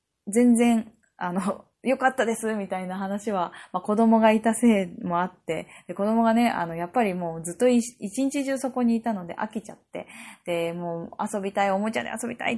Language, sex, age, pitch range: Japanese, female, 20-39, 175-230 Hz